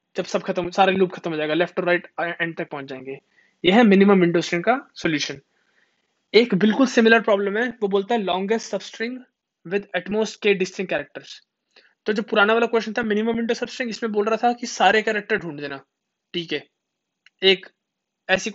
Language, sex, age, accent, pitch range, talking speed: Hindi, male, 20-39, native, 175-210 Hz, 40 wpm